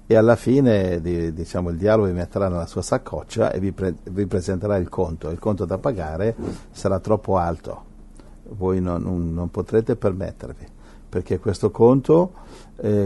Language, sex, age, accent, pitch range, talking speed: Italian, male, 60-79, native, 85-105 Hz, 155 wpm